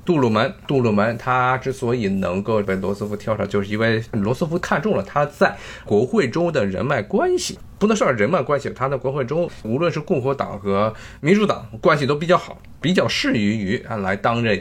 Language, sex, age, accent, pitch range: Chinese, male, 20-39, native, 105-160 Hz